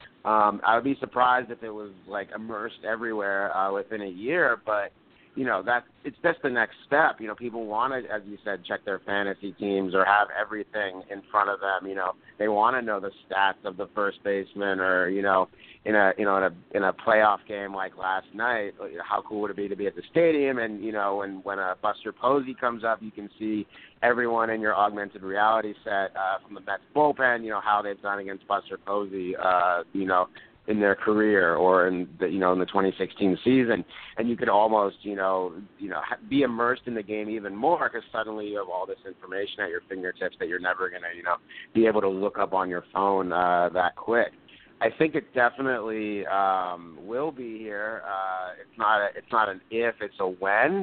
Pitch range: 95-110 Hz